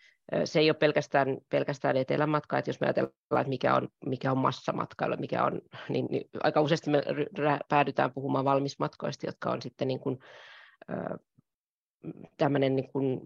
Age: 30-49